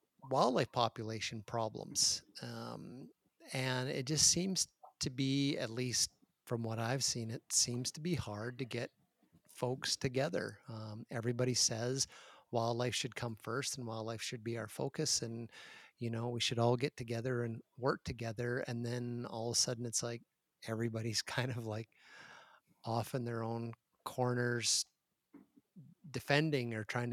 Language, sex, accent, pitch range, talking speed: English, male, American, 115-135 Hz, 155 wpm